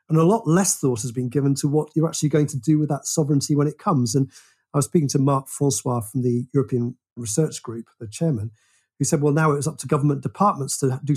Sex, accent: male, British